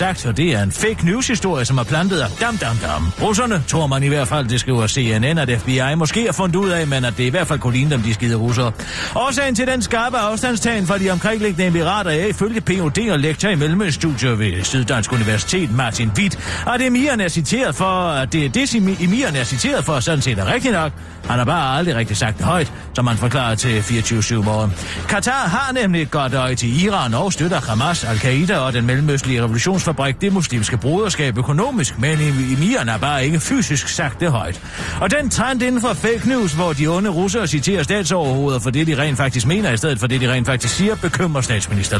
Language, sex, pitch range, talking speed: Danish, male, 125-180 Hz, 220 wpm